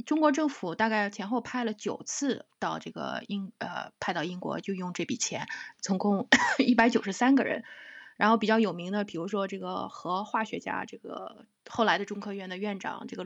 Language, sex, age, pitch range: Chinese, female, 20-39, 200-250 Hz